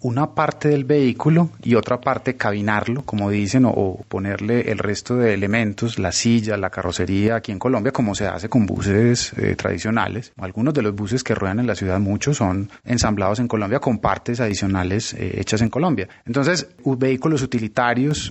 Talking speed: 185 wpm